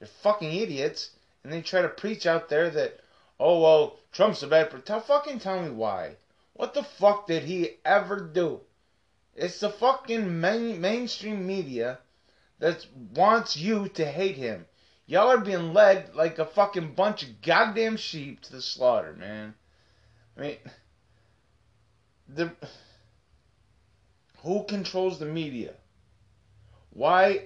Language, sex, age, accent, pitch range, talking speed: English, male, 30-49, American, 145-205 Hz, 135 wpm